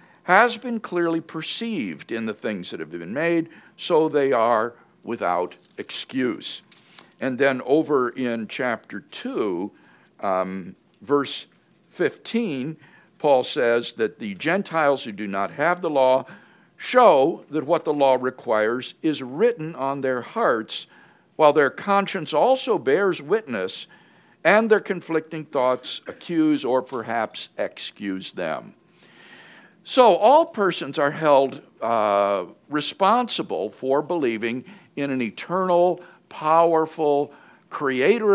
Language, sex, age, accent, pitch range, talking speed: English, male, 50-69, American, 120-185 Hz, 120 wpm